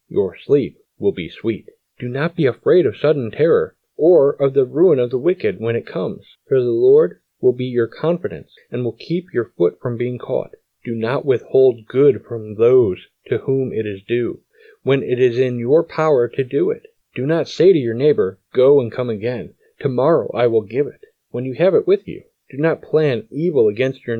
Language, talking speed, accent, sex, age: English, 210 wpm, American, male, 40-59